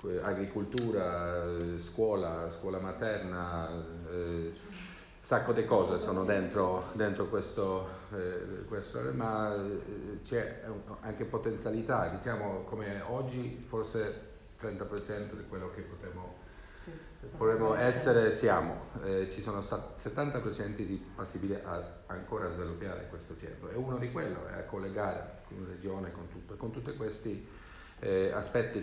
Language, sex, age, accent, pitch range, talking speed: Italian, male, 50-69, native, 90-105 Hz, 120 wpm